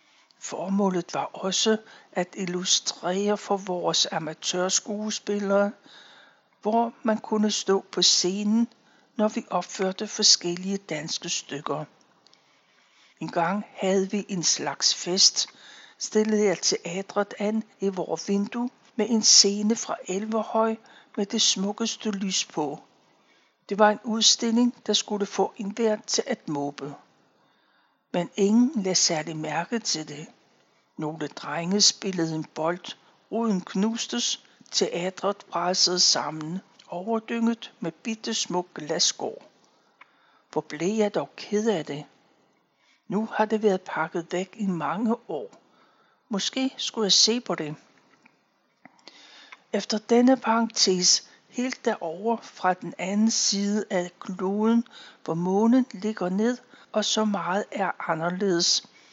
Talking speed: 120 wpm